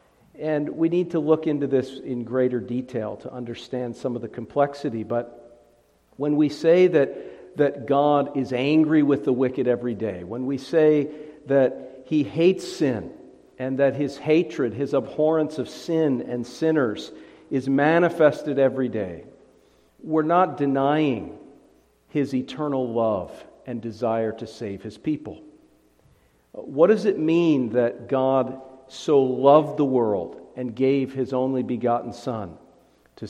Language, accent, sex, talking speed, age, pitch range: English, American, male, 145 wpm, 50-69, 125-150 Hz